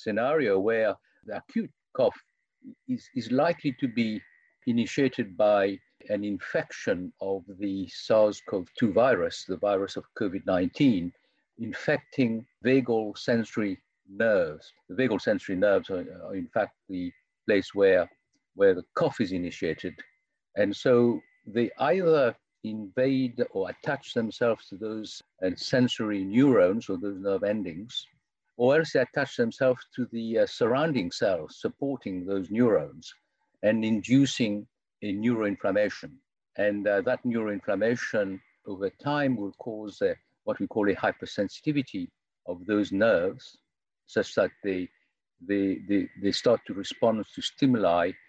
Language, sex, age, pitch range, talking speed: English, male, 50-69, 100-130 Hz, 125 wpm